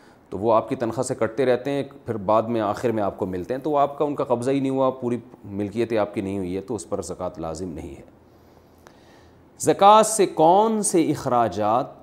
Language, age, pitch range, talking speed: Urdu, 40-59, 110-135 Hz, 230 wpm